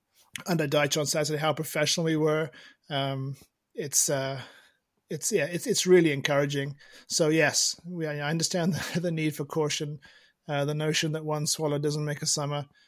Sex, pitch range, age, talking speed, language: male, 140-160 Hz, 20-39, 170 wpm, English